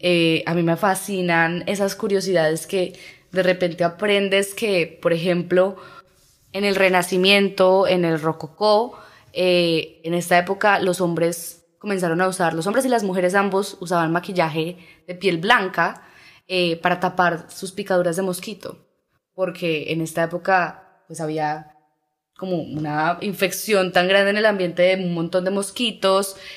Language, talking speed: Spanish, 150 wpm